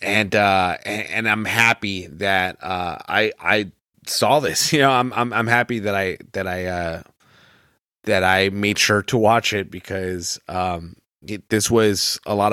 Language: English